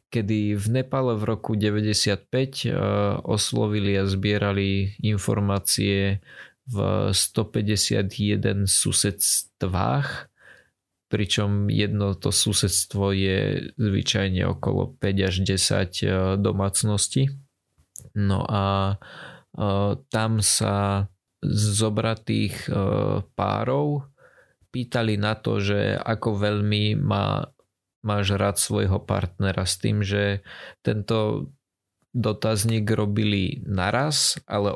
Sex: male